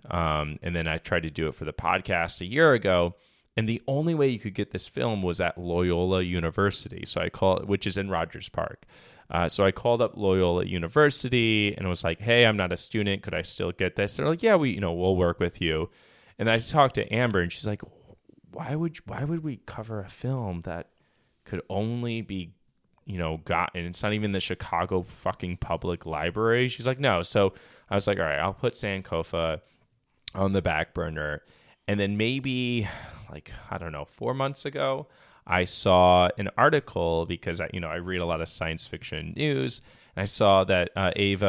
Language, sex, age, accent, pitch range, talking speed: English, male, 20-39, American, 85-110 Hz, 210 wpm